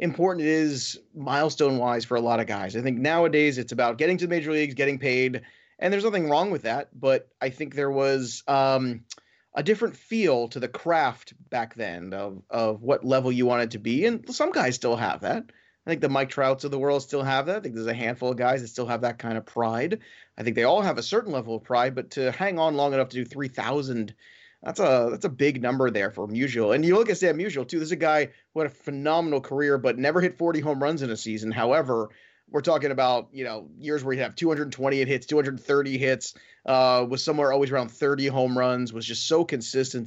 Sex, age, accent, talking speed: male, 30-49, American, 240 wpm